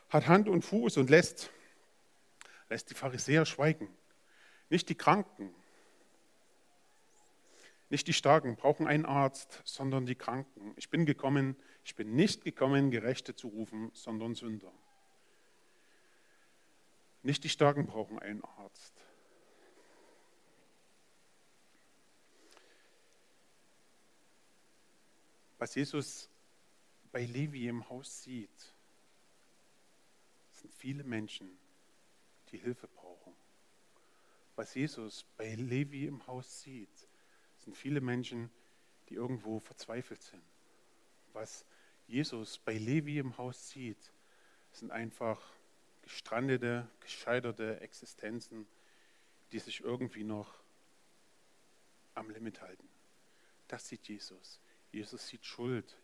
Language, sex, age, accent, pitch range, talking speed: German, male, 50-69, German, 115-150 Hz, 95 wpm